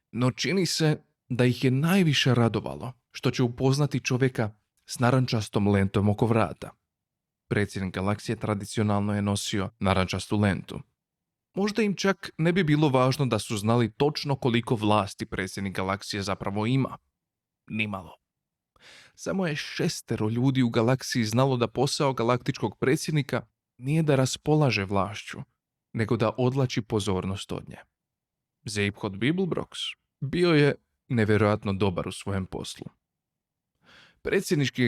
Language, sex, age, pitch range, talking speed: Croatian, male, 30-49, 105-130 Hz, 125 wpm